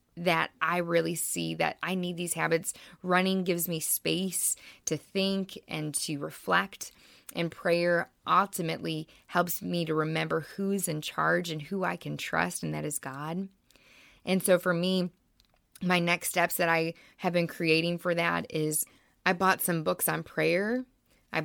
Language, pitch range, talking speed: English, 155-180 Hz, 165 wpm